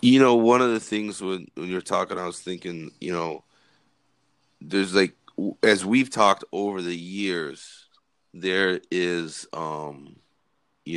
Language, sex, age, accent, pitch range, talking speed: English, male, 30-49, American, 90-105 Hz, 150 wpm